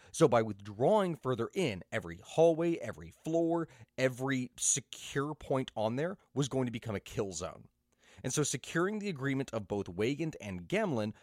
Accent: American